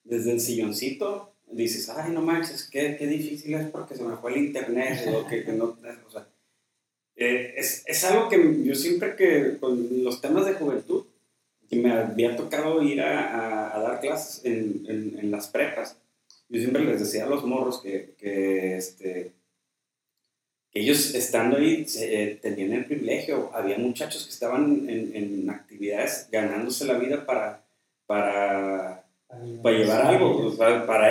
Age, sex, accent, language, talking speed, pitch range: 30-49, male, Mexican, Spanish, 170 wpm, 110-150 Hz